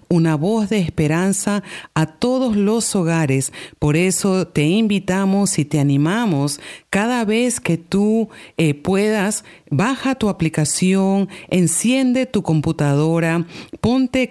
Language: Spanish